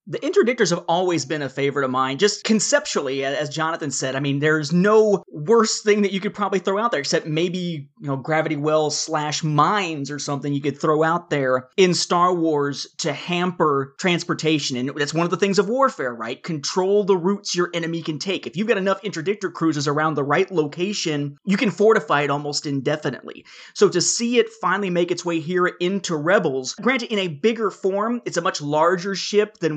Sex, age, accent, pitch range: male, 30-49, American, 150-200 Hz